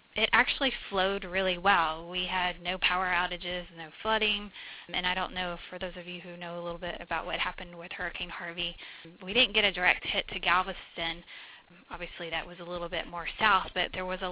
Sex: female